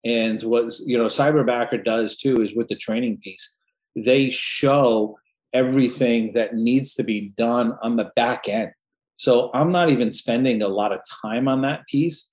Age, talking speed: 40-59, 175 wpm